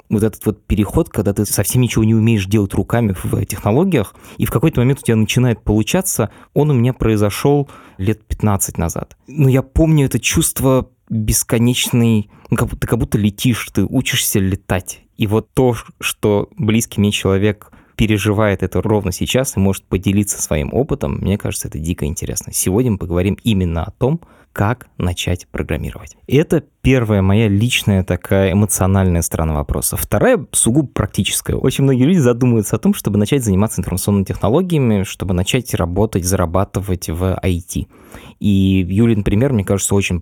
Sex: male